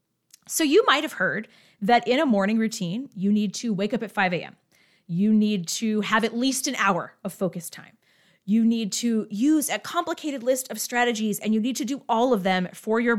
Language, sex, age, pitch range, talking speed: English, female, 30-49, 185-245 Hz, 220 wpm